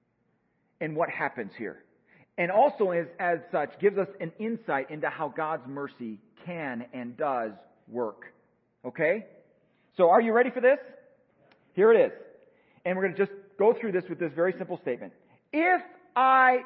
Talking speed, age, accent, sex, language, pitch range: 160 wpm, 40-59, American, male, English, 190-275 Hz